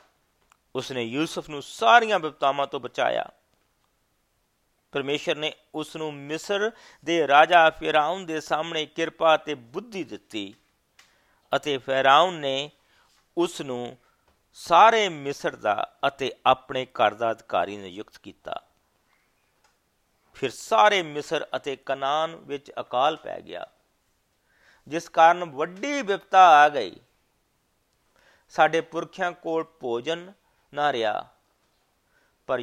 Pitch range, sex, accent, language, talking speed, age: 125-160 Hz, male, Indian, English, 95 wpm, 50-69